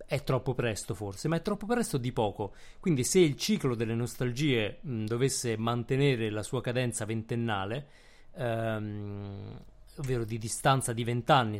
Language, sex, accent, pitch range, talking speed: Italian, male, native, 110-140 Hz, 150 wpm